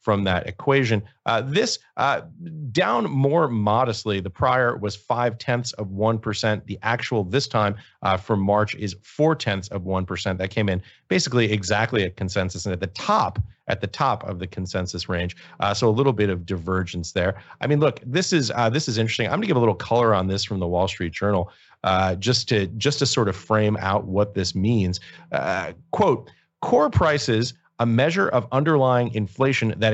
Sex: male